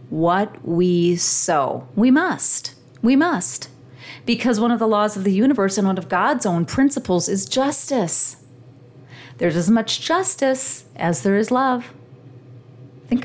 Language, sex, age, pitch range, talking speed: English, female, 40-59, 155-225 Hz, 145 wpm